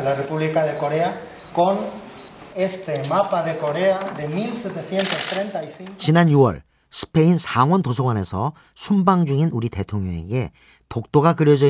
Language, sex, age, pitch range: Korean, male, 40-59, 115-165 Hz